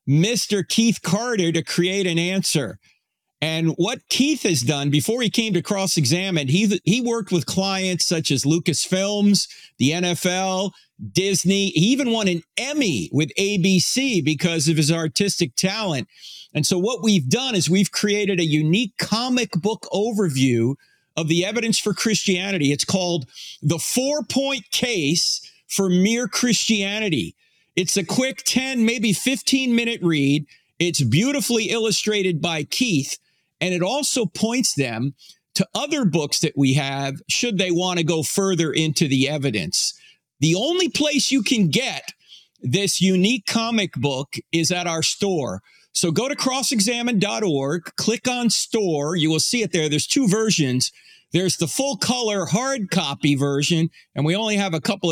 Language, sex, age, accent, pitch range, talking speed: English, male, 50-69, American, 160-220 Hz, 150 wpm